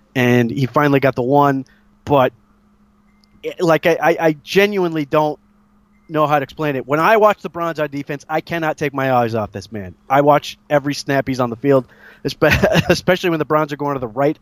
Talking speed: 210 wpm